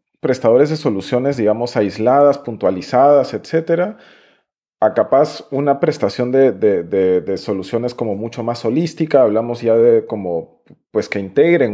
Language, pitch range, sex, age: Spanish, 100-140 Hz, male, 40-59